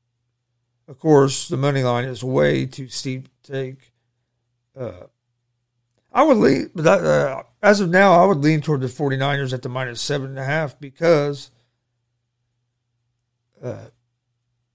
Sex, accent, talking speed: male, American, 145 wpm